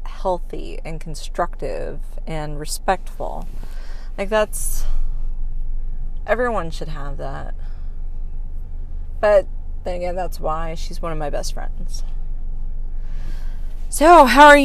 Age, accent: 20-39, American